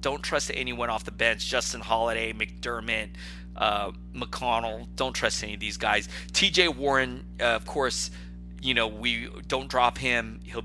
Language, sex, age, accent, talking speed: English, male, 30-49, American, 165 wpm